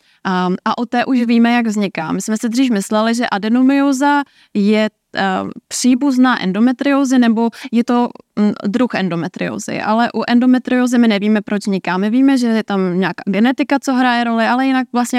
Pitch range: 200-240 Hz